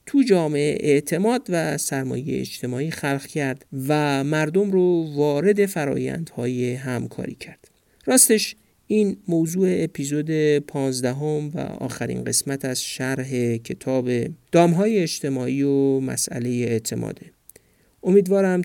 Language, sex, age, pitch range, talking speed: Persian, male, 50-69, 130-170 Hz, 105 wpm